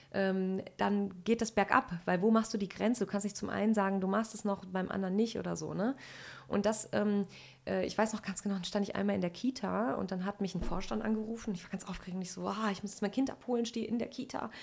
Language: German